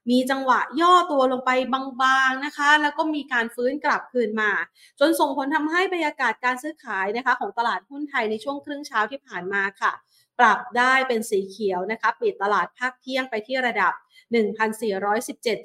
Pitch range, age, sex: 215-275 Hz, 30-49, female